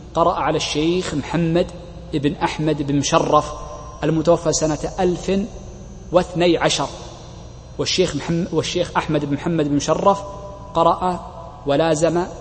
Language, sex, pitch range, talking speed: Arabic, male, 150-170 Hz, 105 wpm